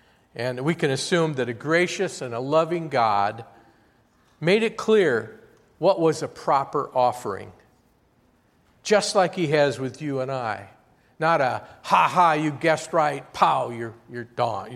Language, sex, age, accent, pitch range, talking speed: English, male, 50-69, American, 120-160 Hz, 150 wpm